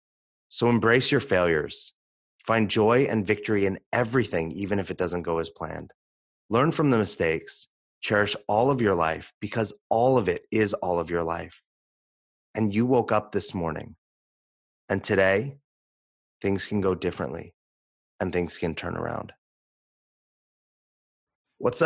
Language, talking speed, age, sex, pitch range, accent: English, 145 wpm, 30-49, male, 95-115 Hz, American